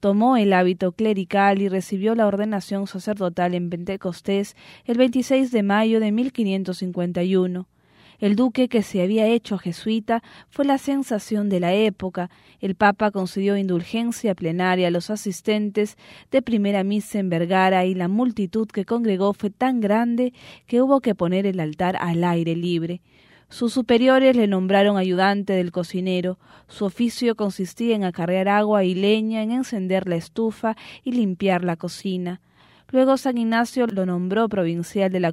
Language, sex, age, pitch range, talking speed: English, female, 20-39, 185-220 Hz, 155 wpm